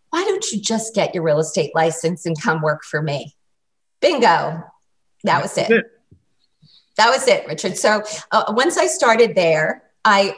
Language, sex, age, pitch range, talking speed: English, female, 40-59, 185-230 Hz, 170 wpm